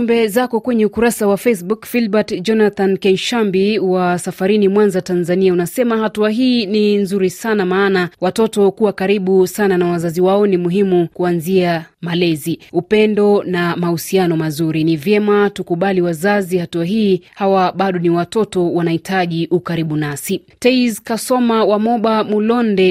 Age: 30-49